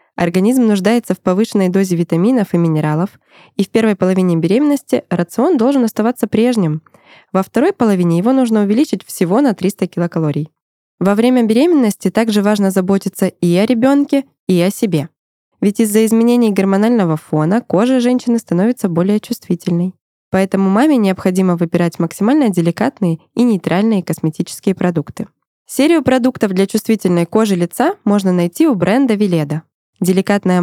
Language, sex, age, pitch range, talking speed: Russian, female, 20-39, 175-230 Hz, 140 wpm